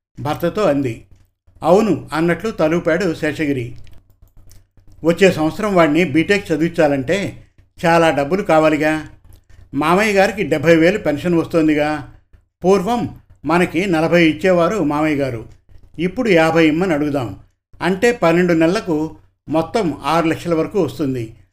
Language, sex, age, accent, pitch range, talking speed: Telugu, male, 50-69, native, 125-175 Hz, 105 wpm